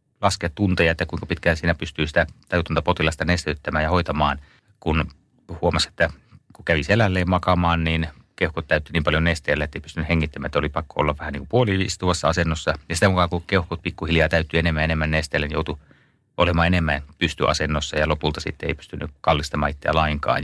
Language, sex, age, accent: Finnish, male, 30-49, native